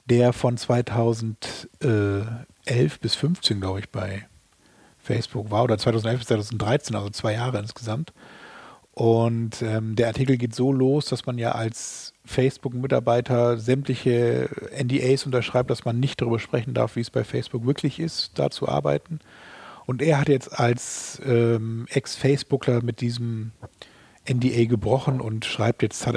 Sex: male